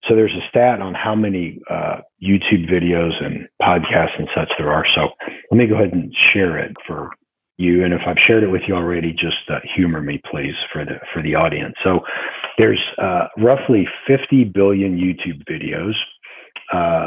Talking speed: 185 wpm